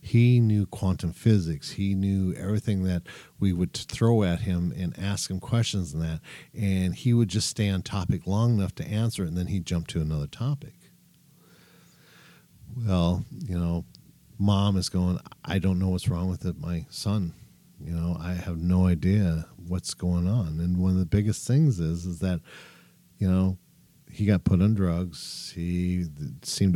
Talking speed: 180 wpm